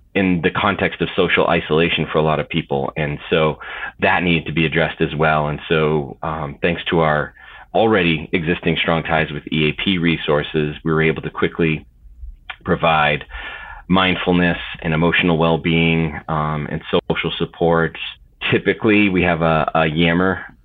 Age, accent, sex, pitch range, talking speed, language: 30-49, American, male, 80-105 Hz, 155 wpm, English